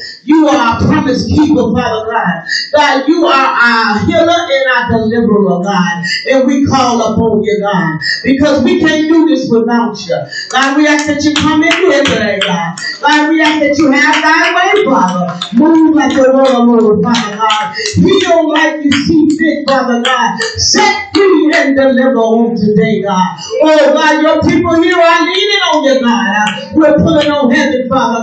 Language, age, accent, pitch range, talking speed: English, 40-59, American, 250-320 Hz, 185 wpm